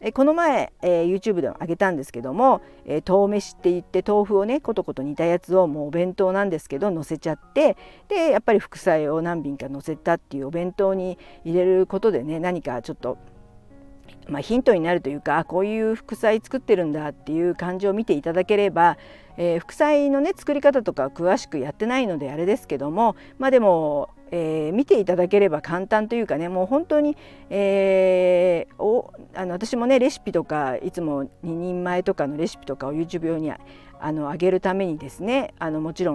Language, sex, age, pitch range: Japanese, female, 50-69, 155-210 Hz